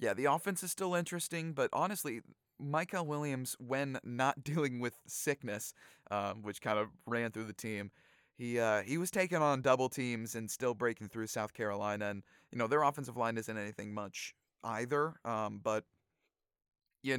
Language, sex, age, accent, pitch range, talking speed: English, male, 30-49, American, 110-145 Hz, 175 wpm